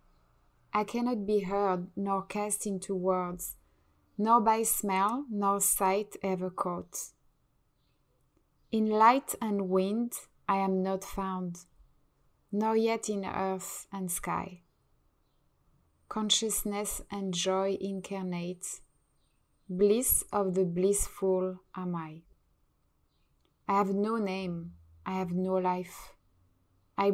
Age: 20-39